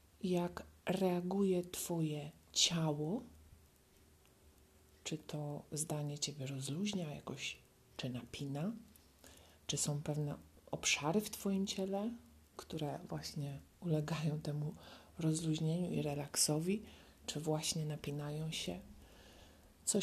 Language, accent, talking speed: Polish, native, 95 wpm